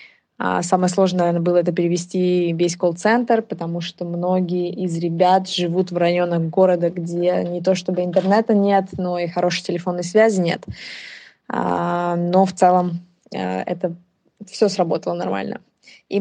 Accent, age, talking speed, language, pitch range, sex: native, 20-39, 135 wpm, Russian, 175-195 Hz, female